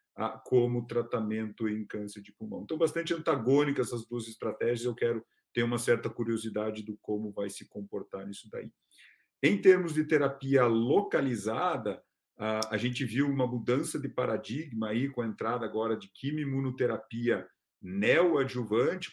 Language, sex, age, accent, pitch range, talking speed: Portuguese, male, 50-69, Brazilian, 110-140 Hz, 140 wpm